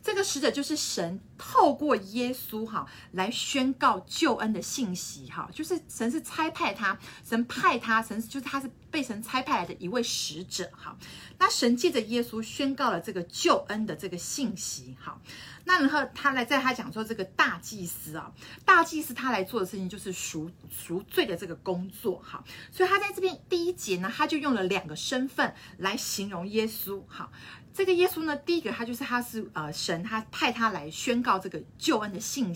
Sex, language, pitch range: female, Chinese, 185-280 Hz